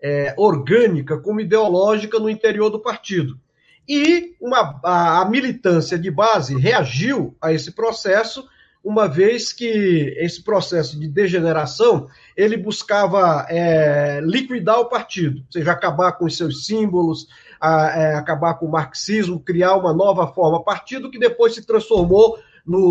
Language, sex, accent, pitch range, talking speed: Portuguese, male, Brazilian, 165-230 Hz, 130 wpm